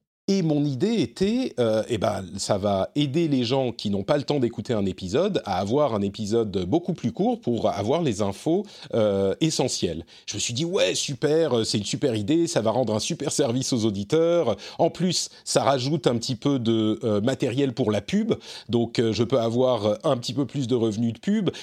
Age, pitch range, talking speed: 40-59, 110-155 Hz, 215 wpm